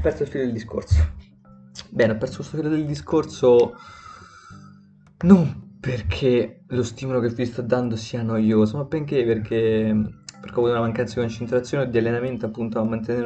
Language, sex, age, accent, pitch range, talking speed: Italian, male, 20-39, native, 110-125 Hz, 170 wpm